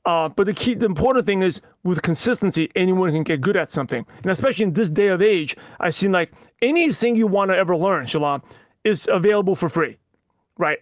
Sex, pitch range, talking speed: male, 170-210 Hz, 210 wpm